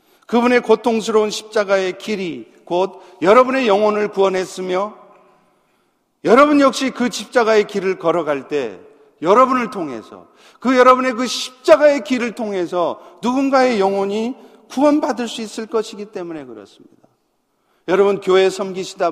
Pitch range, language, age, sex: 190-245 Hz, Korean, 40-59, male